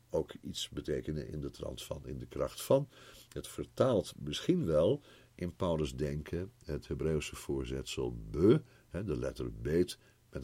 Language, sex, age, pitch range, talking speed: Dutch, male, 60-79, 80-120 Hz, 155 wpm